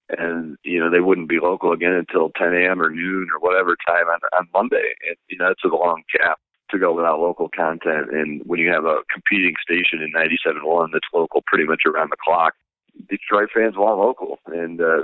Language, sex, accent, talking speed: English, male, American, 210 wpm